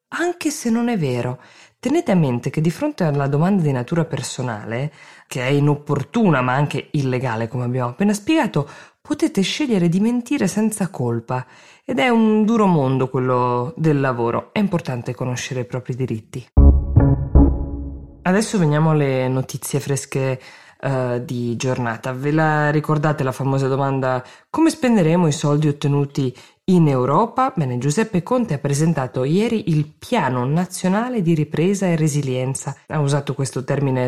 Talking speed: 145 wpm